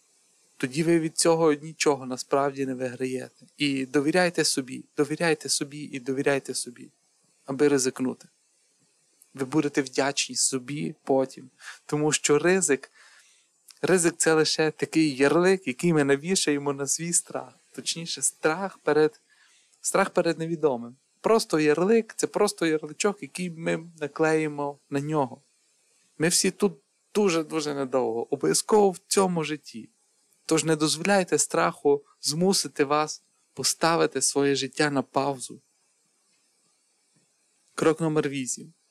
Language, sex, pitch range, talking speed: Ukrainian, male, 135-160 Hz, 115 wpm